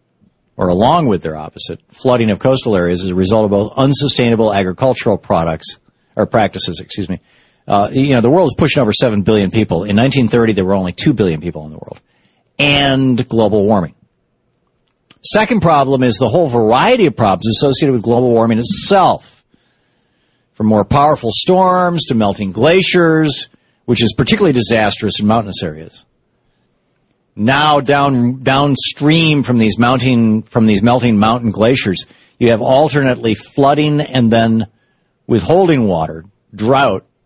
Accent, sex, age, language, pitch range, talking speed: American, male, 50-69, English, 105-135 Hz, 150 wpm